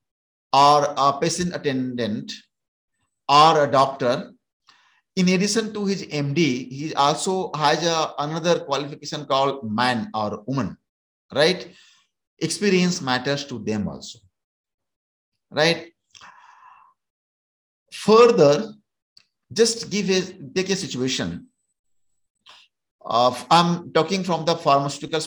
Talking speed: 100 wpm